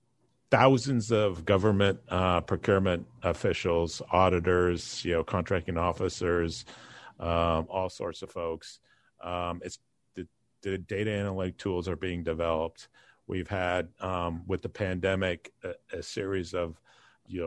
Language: English